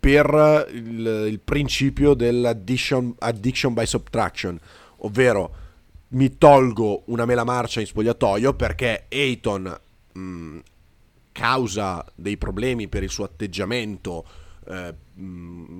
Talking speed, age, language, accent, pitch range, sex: 100 wpm, 30-49, Italian, native, 95-120 Hz, male